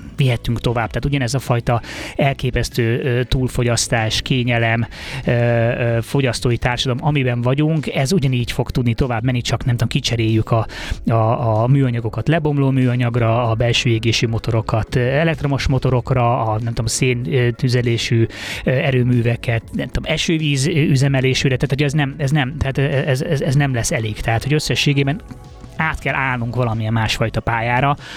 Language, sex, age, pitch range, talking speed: Hungarian, male, 20-39, 115-135 Hz, 135 wpm